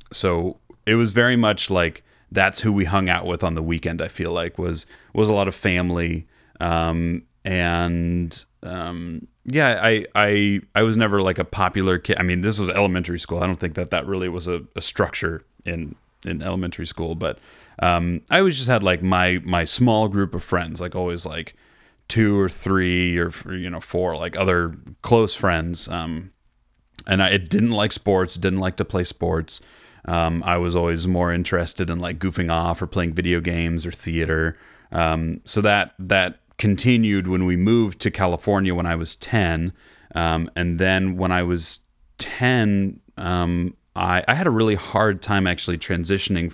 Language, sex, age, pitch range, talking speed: English, male, 30-49, 85-100 Hz, 185 wpm